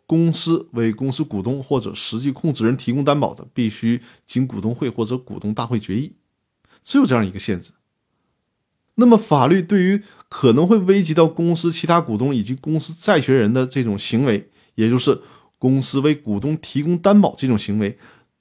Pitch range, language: 110-155 Hz, Chinese